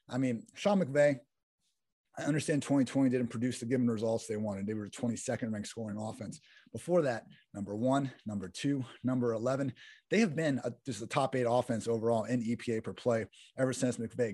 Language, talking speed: English, 190 wpm